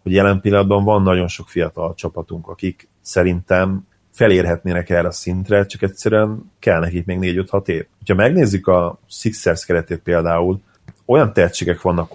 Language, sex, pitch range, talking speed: Hungarian, male, 85-100 Hz, 155 wpm